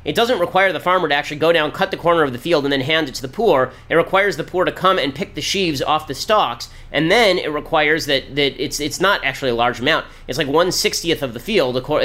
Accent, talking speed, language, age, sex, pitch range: American, 270 wpm, English, 30-49, male, 130-170 Hz